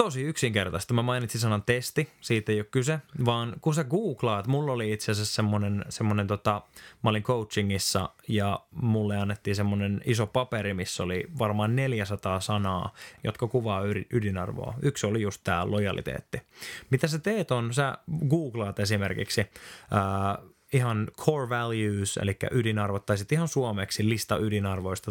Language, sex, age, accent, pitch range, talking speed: Finnish, male, 20-39, native, 100-125 Hz, 150 wpm